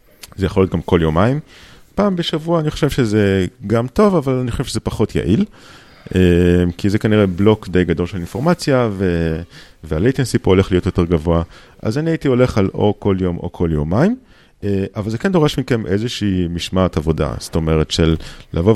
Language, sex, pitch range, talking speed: Hebrew, male, 90-125 Hz, 180 wpm